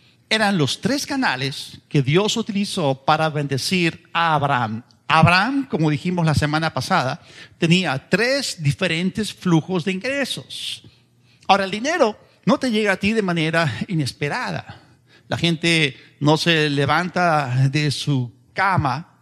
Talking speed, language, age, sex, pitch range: 130 wpm, Spanish, 50-69, male, 145-190 Hz